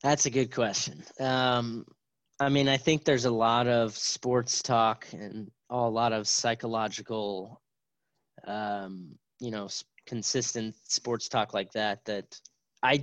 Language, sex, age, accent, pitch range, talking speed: English, male, 20-39, American, 110-125 Hz, 140 wpm